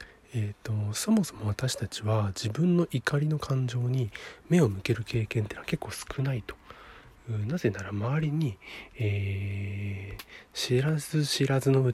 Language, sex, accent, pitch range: Japanese, male, native, 110-150 Hz